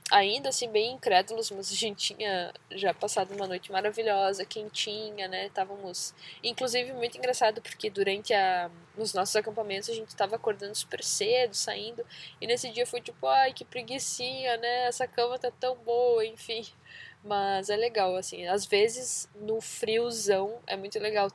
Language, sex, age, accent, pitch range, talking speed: Portuguese, female, 10-29, Brazilian, 195-250 Hz, 165 wpm